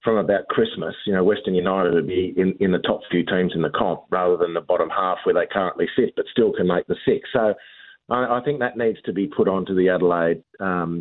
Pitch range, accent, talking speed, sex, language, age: 100-125 Hz, Australian, 250 wpm, male, English, 40-59